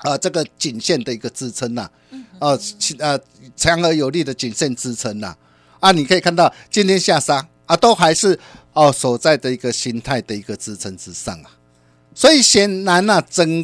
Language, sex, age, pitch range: Chinese, male, 50-69, 110-165 Hz